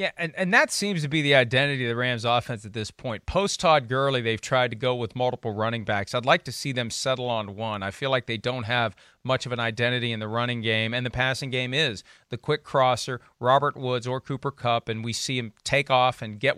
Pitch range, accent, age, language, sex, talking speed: 115-140 Hz, American, 40-59, English, male, 250 wpm